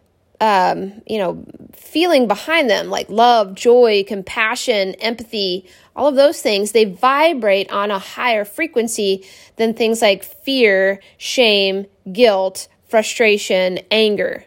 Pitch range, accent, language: 195-245 Hz, American, English